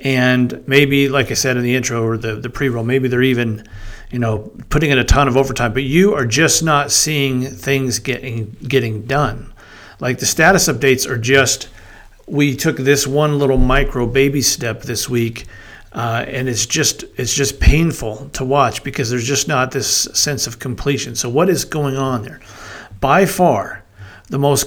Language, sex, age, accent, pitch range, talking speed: English, male, 50-69, American, 120-145 Hz, 185 wpm